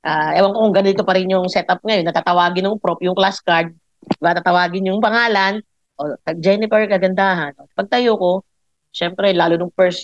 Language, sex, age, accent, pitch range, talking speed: Filipino, female, 40-59, native, 180-230 Hz, 175 wpm